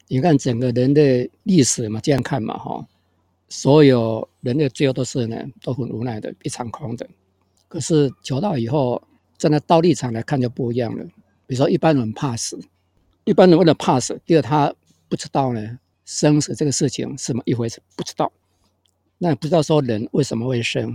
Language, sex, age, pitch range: Chinese, male, 50-69, 115-150 Hz